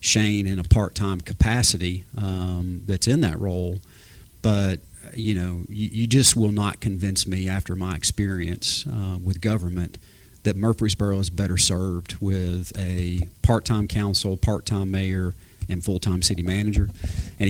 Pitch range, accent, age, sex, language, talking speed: 90-105 Hz, American, 40-59, male, English, 145 wpm